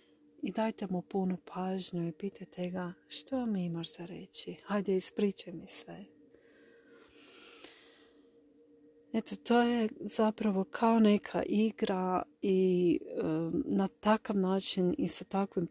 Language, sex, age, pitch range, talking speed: Croatian, female, 40-59, 175-205 Hz, 120 wpm